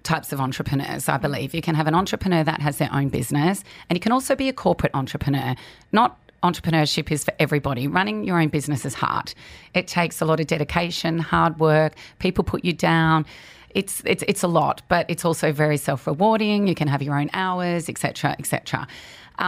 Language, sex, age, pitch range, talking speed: English, female, 40-59, 150-185 Hz, 205 wpm